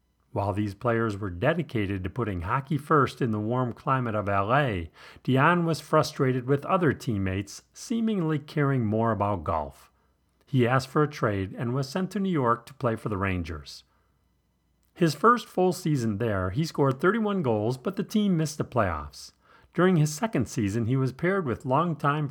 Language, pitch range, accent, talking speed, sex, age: English, 100-155 Hz, American, 180 wpm, male, 40-59